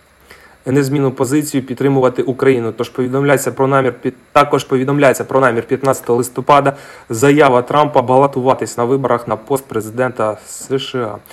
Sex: male